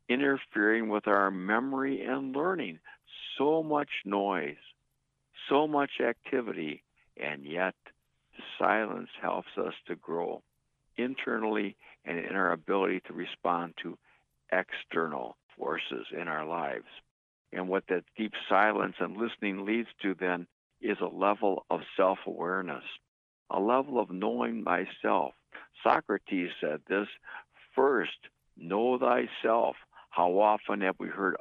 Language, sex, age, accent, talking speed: English, male, 60-79, American, 120 wpm